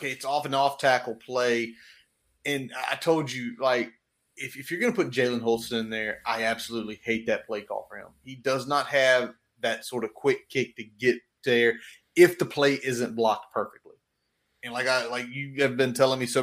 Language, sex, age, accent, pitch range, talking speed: English, male, 30-49, American, 120-140 Hz, 205 wpm